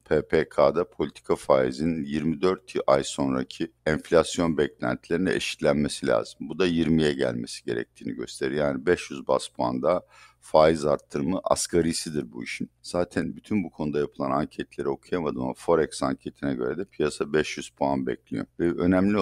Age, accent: 50-69, native